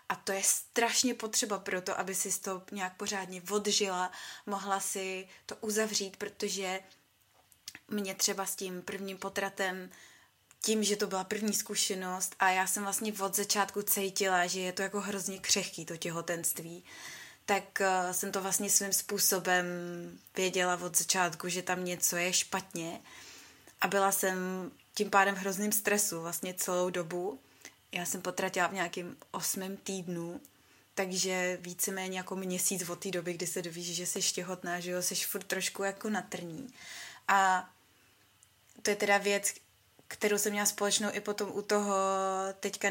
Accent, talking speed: native, 155 wpm